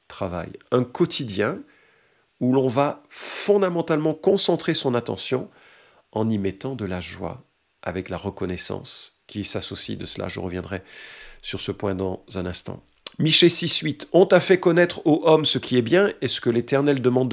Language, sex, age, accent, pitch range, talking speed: French, male, 50-69, French, 105-165 Hz, 165 wpm